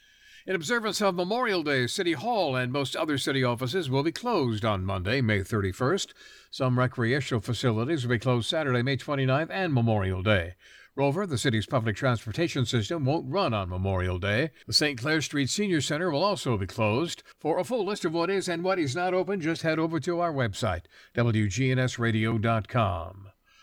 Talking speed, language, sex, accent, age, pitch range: 180 wpm, English, male, American, 60-79, 115-160 Hz